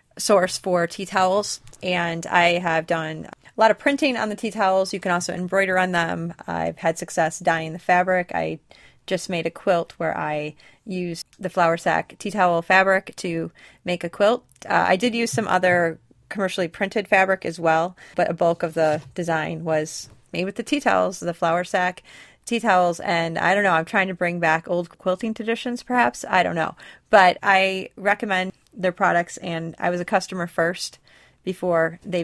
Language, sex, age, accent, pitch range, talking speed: English, female, 30-49, American, 165-190 Hz, 190 wpm